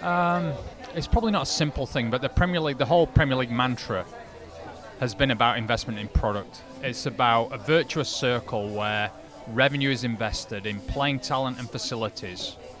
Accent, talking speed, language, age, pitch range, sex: British, 170 wpm, English, 30-49, 115-145 Hz, male